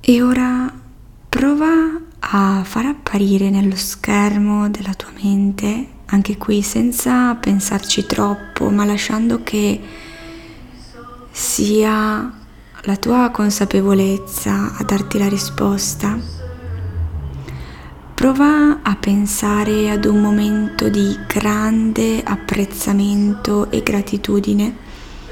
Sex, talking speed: female, 90 wpm